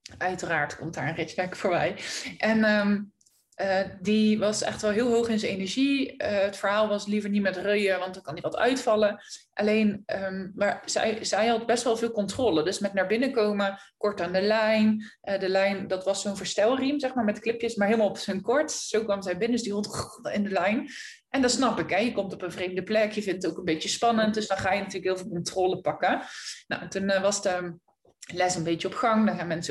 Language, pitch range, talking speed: Dutch, 190-230 Hz, 240 wpm